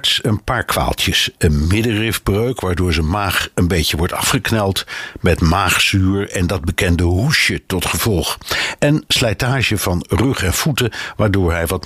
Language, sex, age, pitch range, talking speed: Dutch, male, 60-79, 90-115 Hz, 145 wpm